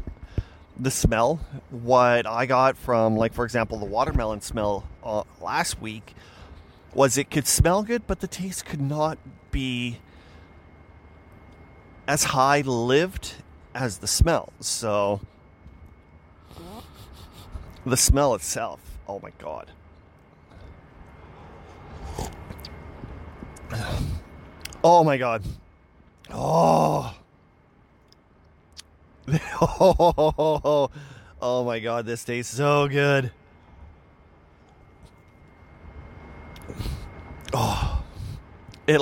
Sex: male